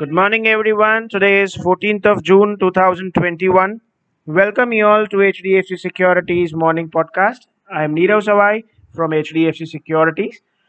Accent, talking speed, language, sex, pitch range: Indian, 135 wpm, English, male, 170-200 Hz